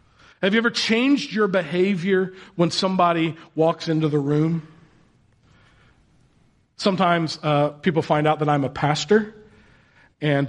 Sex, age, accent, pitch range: male, 40-59, American, 150-210 Hz